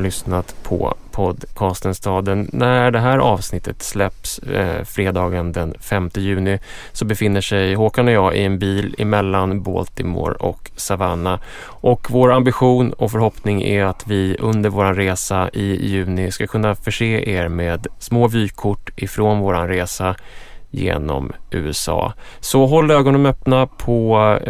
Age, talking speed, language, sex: 20-39, 135 wpm, English, male